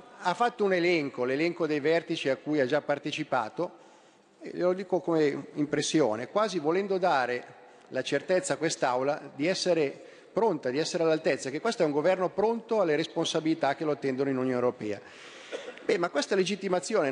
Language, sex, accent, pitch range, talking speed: Italian, male, native, 135-185 Hz, 165 wpm